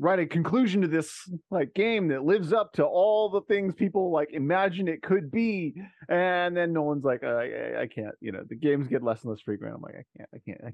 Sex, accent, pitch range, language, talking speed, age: male, American, 120-170 Hz, English, 250 wpm, 30-49